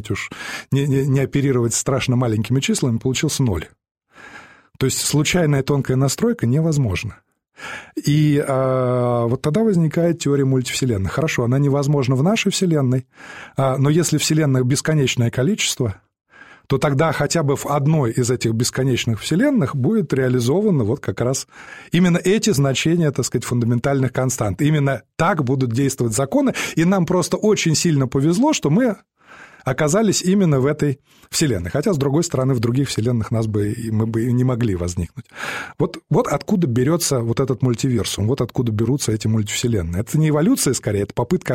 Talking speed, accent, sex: 155 wpm, native, male